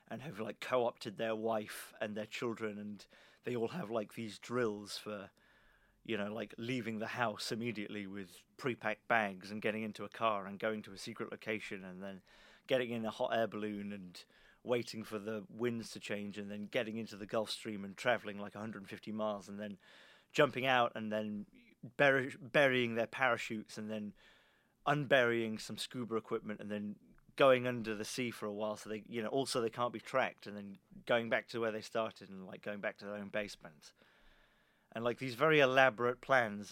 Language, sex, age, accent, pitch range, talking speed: English, male, 30-49, British, 105-130 Hz, 195 wpm